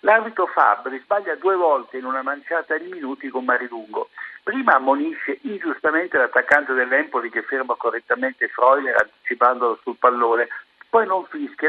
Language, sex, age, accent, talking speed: Italian, male, 60-79, native, 140 wpm